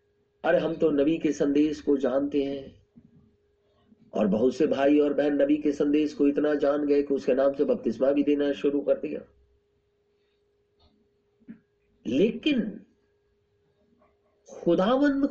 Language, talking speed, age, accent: Hindi, 135 wpm, 50-69, native